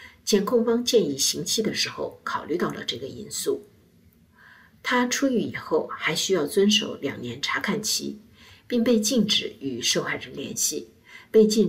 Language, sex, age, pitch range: Chinese, female, 50-69, 155-240 Hz